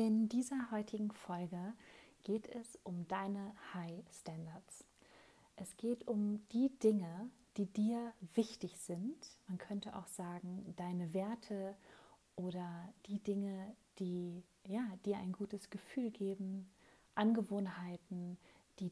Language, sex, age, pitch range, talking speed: German, female, 30-49, 180-220 Hz, 115 wpm